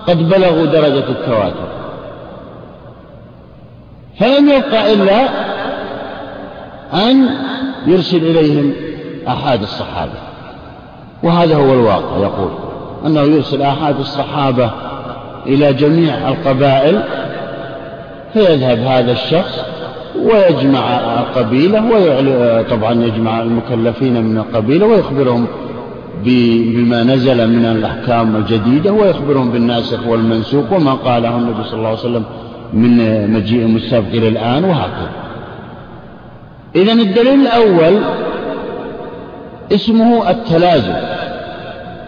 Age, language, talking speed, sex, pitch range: 50-69, Arabic, 85 wpm, male, 120-190 Hz